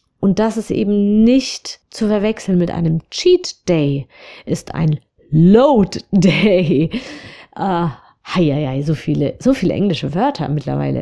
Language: German